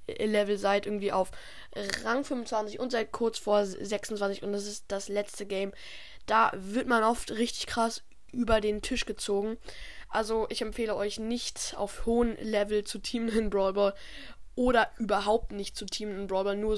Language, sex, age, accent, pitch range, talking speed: German, female, 10-29, German, 205-240 Hz, 170 wpm